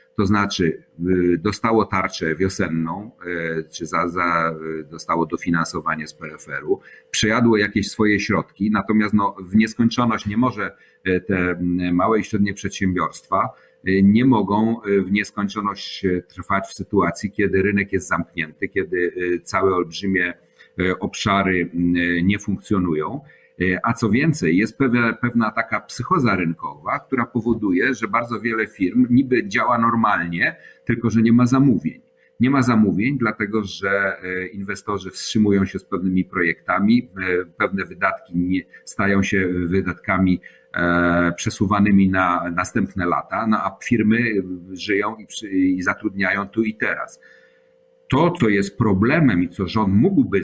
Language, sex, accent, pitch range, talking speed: Polish, male, native, 90-110 Hz, 125 wpm